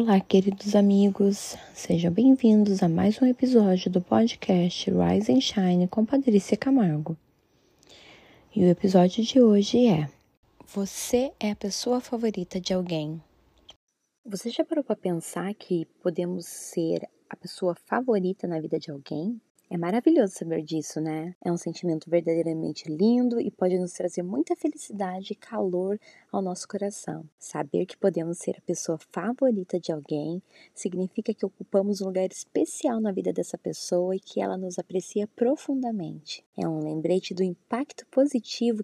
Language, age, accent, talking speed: Portuguese, 20-39, Brazilian, 150 wpm